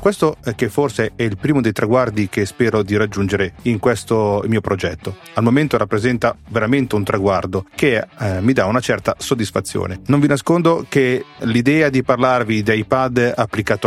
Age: 30-49